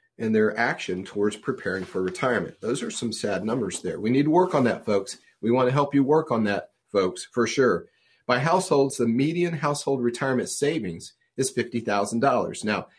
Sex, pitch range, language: male, 115-145 Hz, English